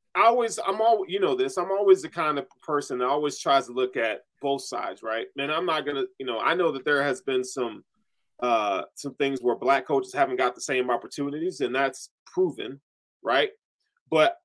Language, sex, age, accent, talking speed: English, male, 20-39, American, 210 wpm